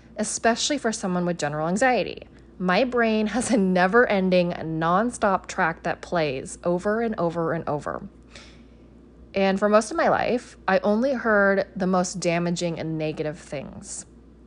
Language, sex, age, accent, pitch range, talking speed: English, female, 20-39, American, 175-220 Hz, 145 wpm